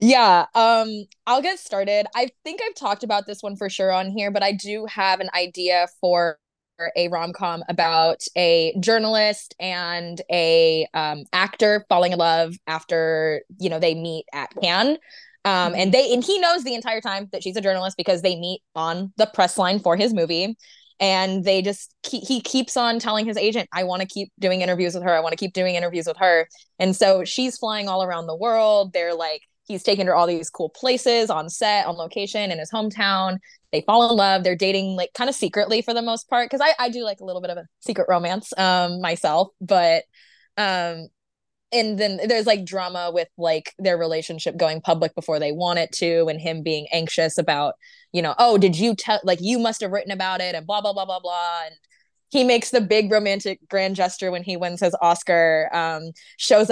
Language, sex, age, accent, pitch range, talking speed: English, female, 20-39, American, 175-215 Hz, 215 wpm